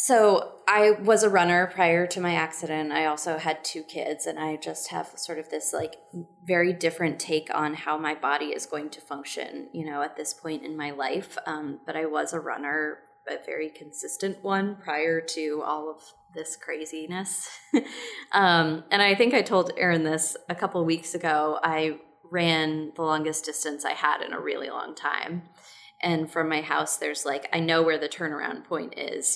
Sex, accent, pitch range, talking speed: female, American, 160-190 Hz, 195 wpm